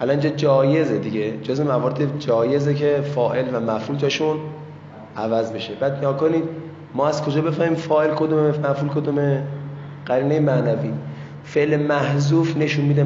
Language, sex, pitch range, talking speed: Persian, male, 120-150 Hz, 140 wpm